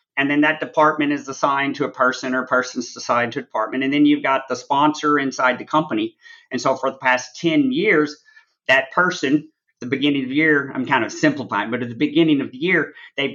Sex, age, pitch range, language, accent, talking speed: male, 40-59, 135-170 Hz, English, American, 230 wpm